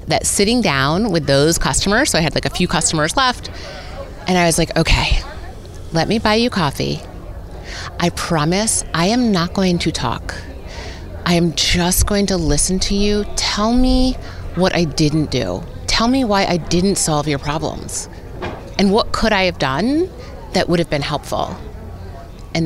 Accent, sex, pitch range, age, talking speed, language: American, female, 140-215 Hz, 30-49, 175 wpm, English